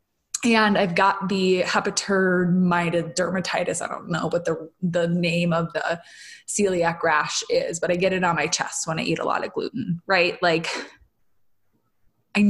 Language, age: English, 20-39